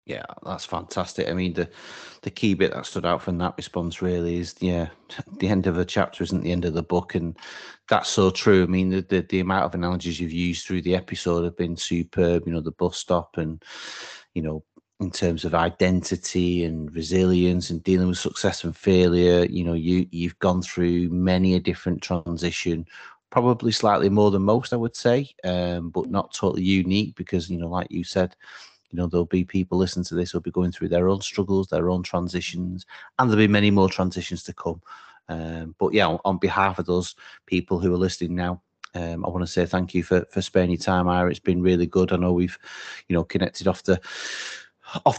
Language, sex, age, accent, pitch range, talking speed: English, male, 30-49, British, 90-100 Hz, 215 wpm